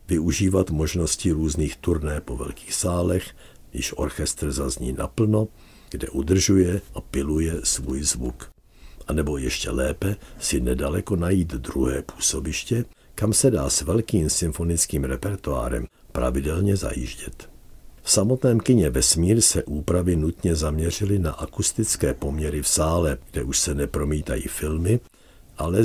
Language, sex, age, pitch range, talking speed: Czech, male, 60-79, 70-90 Hz, 125 wpm